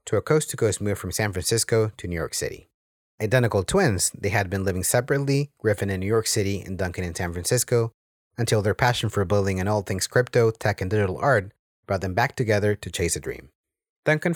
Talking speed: 205 wpm